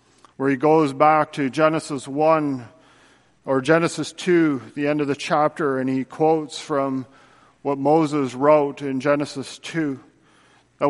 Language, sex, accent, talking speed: English, male, American, 145 wpm